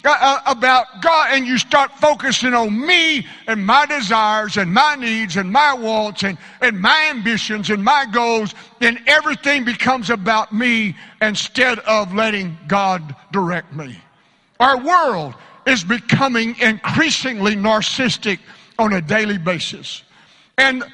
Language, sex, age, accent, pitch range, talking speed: English, male, 60-79, American, 210-265 Hz, 130 wpm